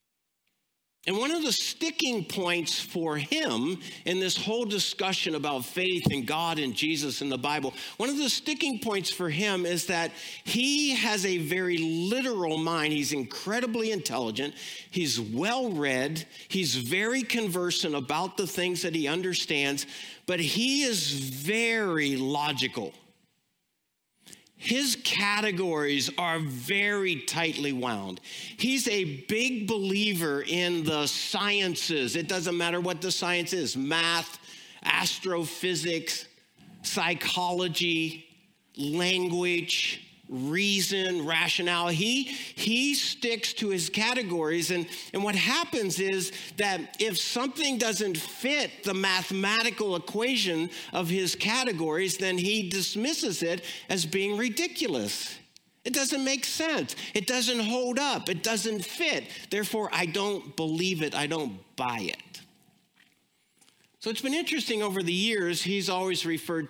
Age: 50-69